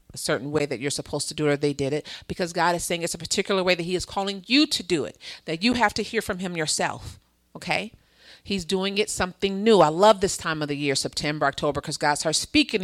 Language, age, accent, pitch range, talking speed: English, 40-59, American, 155-220 Hz, 260 wpm